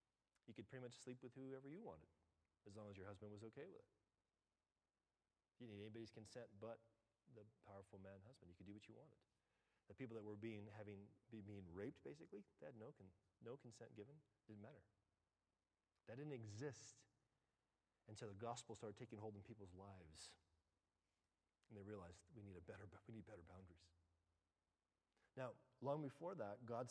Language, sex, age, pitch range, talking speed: English, male, 40-59, 95-120 Hz, 180 wpm